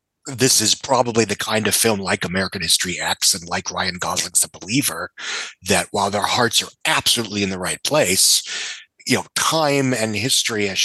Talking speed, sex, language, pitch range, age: 185 wpm, male, English, 110-135 Hz, 30-49